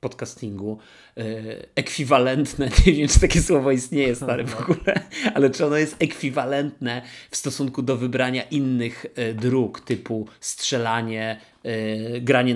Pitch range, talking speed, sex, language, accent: 120-145 Hz, 120 wpm, male, Polish, native